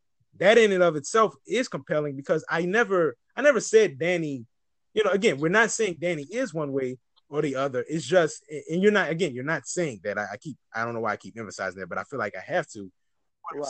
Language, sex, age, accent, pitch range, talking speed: English, male, 20-39, American, 135-180 Hz, 250 wpm